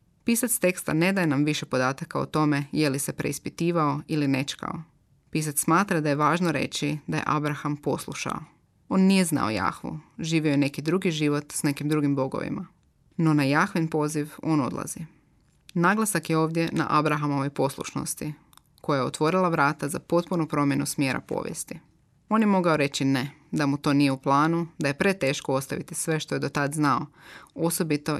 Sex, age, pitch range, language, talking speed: female, 20-39, 140-165 Hz, Croatian, 170 wpm